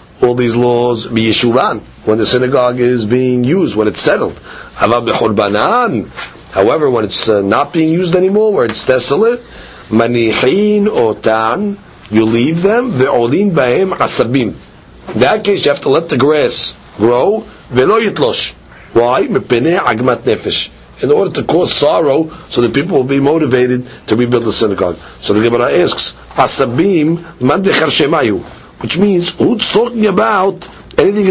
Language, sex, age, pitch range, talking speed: English, male, 40-59, 125-190 Hz, 120 wpm